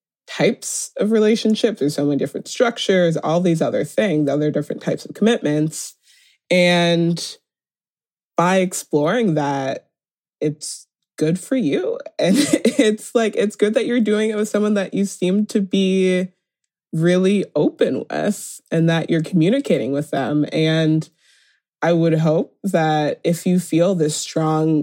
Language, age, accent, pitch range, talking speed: English, 20-39, American, 150-185 Hz, 145 wpm